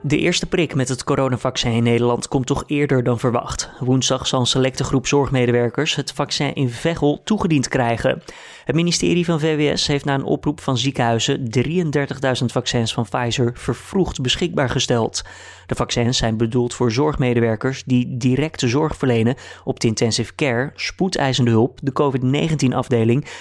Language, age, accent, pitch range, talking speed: Dutch, 20-39, Dutch, 120-145 Hz, 155 wpm